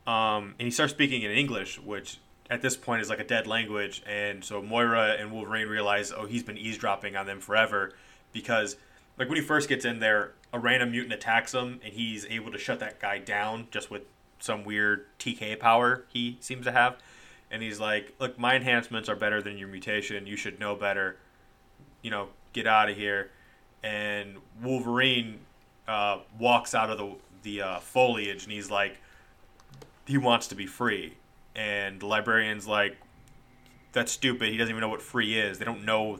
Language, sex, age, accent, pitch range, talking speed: English, male, 20-39, American, 100-120 Hz, 190 wpm